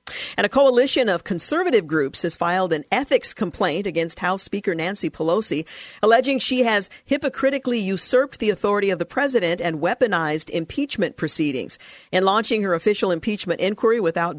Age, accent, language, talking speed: 50-69, American, English, 155 wpm